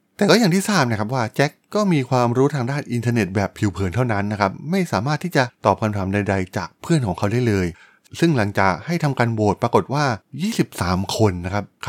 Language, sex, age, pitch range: Thai, male, 20-39, 100-130 Hz